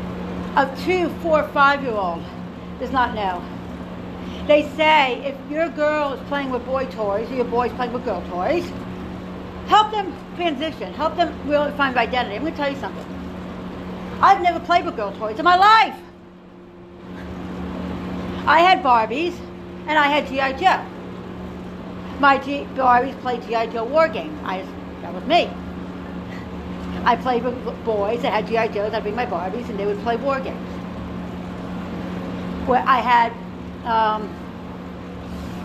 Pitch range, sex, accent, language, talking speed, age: 215-280 Hz, female, American, English, 155 wpm, 60-79